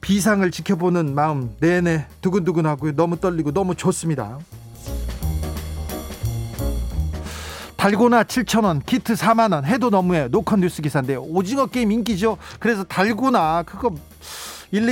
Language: Korean